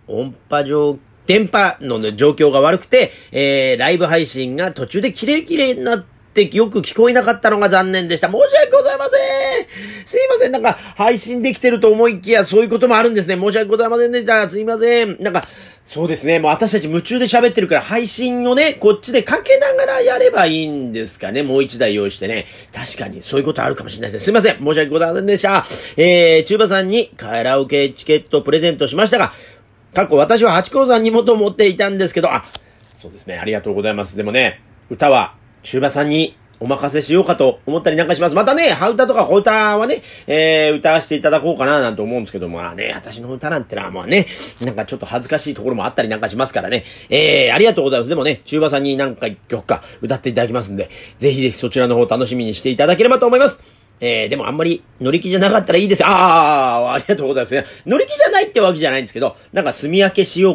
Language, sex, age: Japanese, male, 40-59